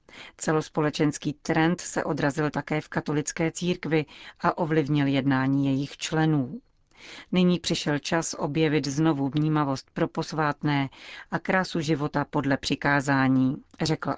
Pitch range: 145-170 Hz